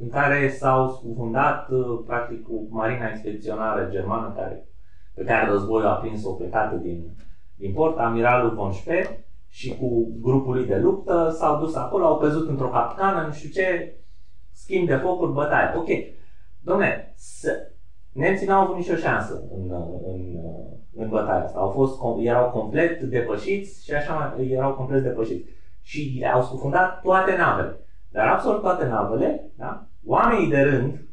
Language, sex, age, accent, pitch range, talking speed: Romanian, male, 30-49, native, 105-155 Hz, 145 wpm